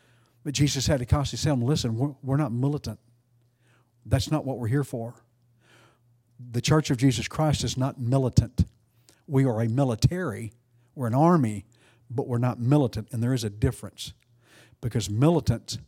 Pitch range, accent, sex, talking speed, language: 115-140 Hz, American, male, 165 wpm, English